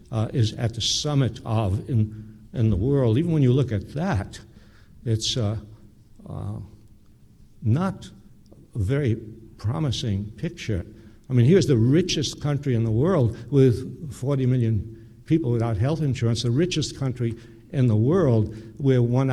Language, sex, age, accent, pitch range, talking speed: English, male, 60-79, American, 110-140 Hz, 150 wpm